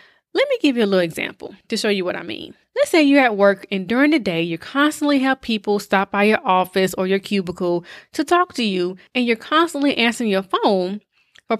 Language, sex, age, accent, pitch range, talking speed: English, female, 20-39, American, 195-280 Hz, 230 wpm